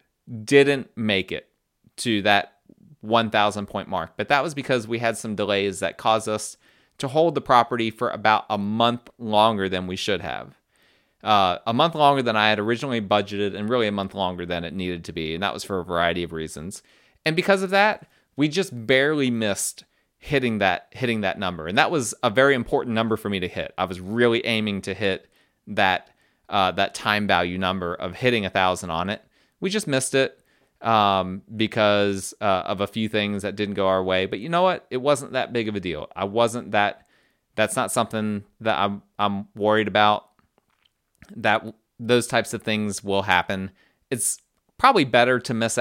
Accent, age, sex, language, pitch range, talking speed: American, 30-49, male, English, 100-120 Hz, 195 wpm